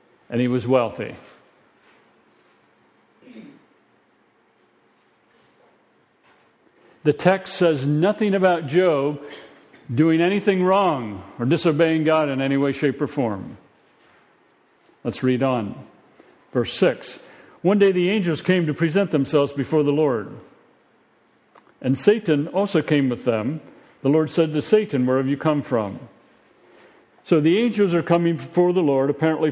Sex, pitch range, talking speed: male, 135-185 Hz, 130 wpm